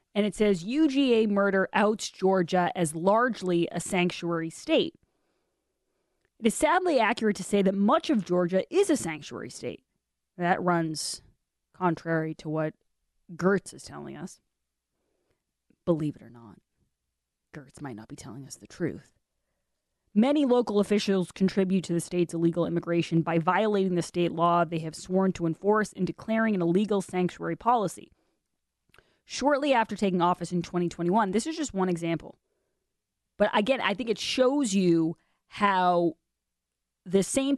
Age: 30-49